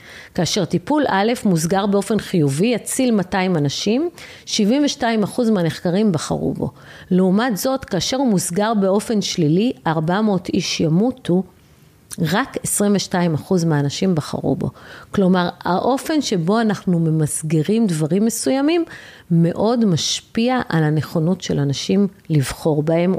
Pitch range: 165-220 Hz